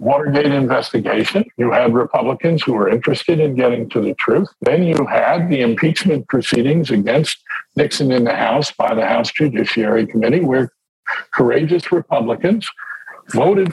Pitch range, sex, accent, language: 130-160 Hz, male, American, English